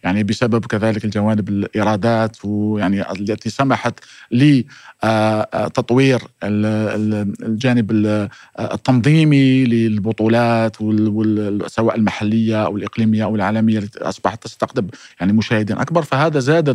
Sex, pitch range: male, 110-125 Hz